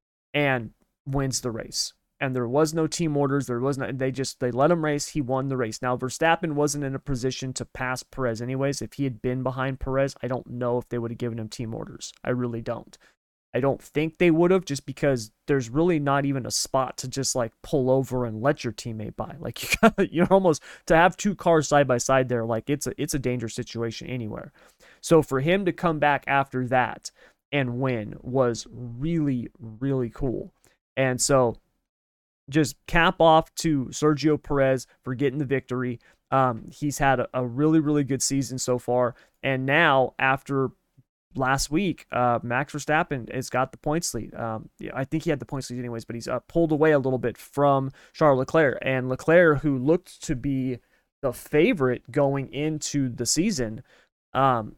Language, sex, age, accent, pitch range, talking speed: English, male, 30-49, American, 125-150 Hz, 200 wpm